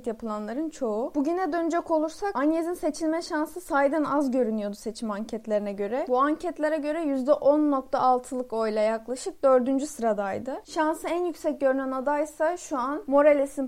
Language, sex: Turkish, female